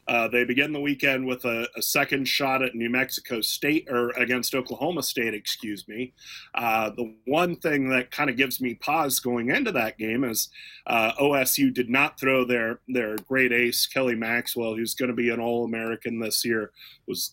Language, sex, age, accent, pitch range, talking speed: English, male, 30-49, American, 120-145 Hz, 190 wpm